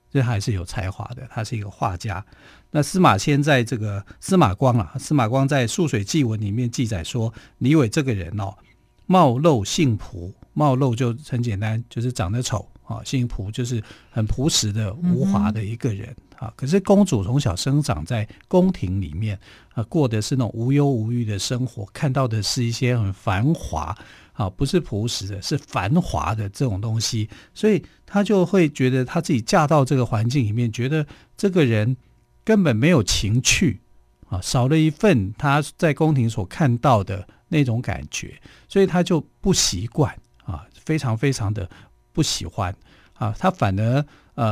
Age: 50-69